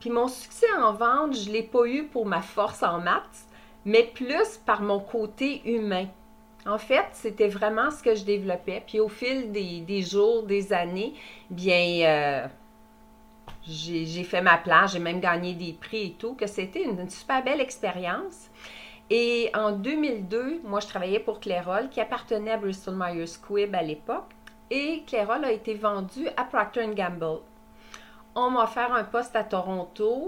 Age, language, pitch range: 40-59, French, 195-240 Hz